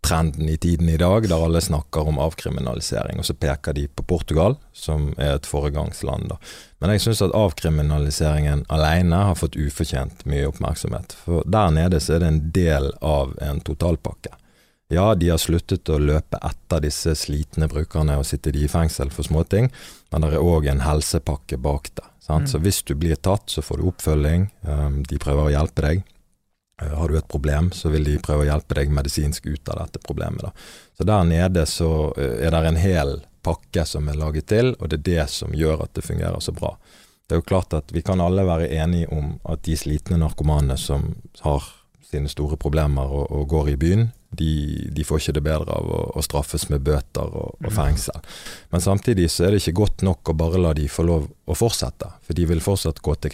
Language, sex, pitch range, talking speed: English, male, 75-85 Hz, 200 wpm